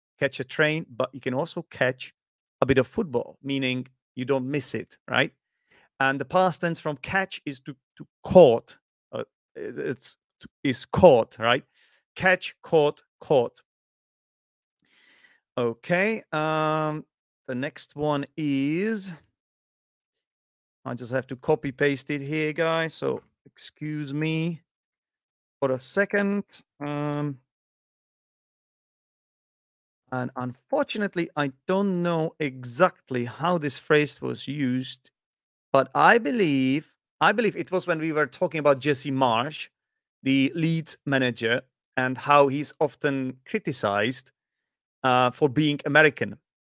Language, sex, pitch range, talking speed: English, male, 130-160 Hz, 120 wpm